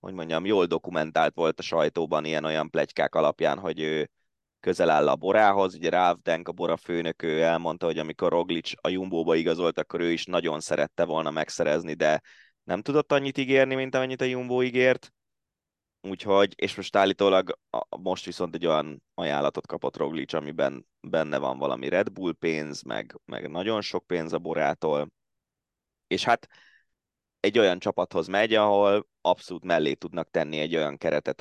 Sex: male